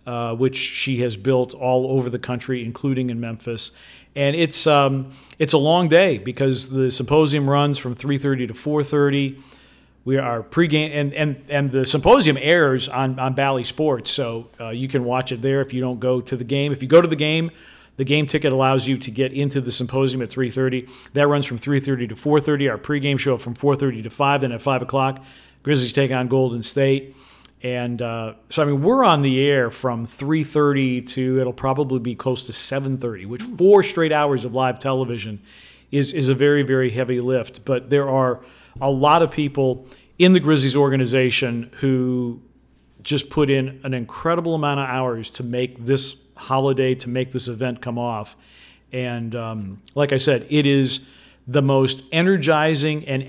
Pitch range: 125-145 Hz